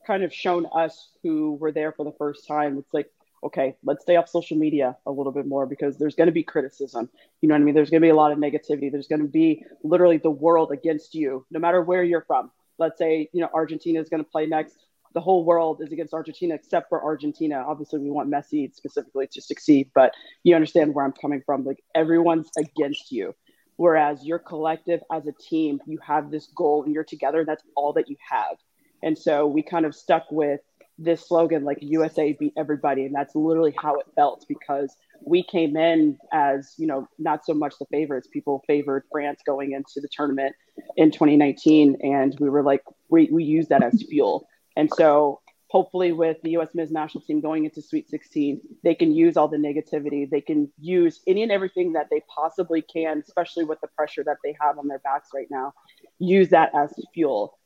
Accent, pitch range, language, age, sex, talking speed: American, 145-170 Hz, English, 20-39, female, 215 wpm